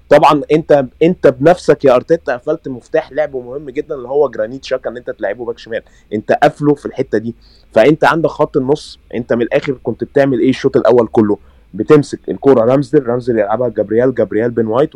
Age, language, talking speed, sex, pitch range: 20-39, Arabic, 190 wpm, male, 120-150 Hz